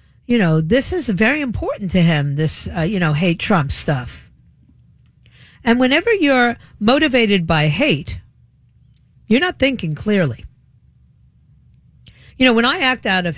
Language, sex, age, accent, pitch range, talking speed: English, female, 50-69, American, 160-230 Hz, 145 wpm